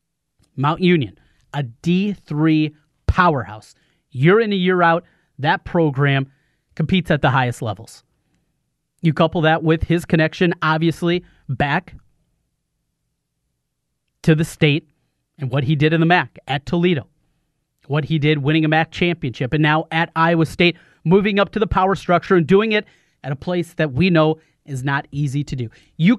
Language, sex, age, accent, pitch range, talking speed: English, male, 30-49, American, 145-180 Hz, 160 wpm